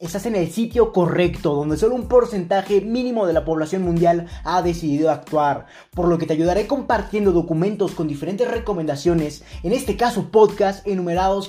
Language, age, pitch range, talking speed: Spanish, 20-39, 160-200 Hz, 165 wpm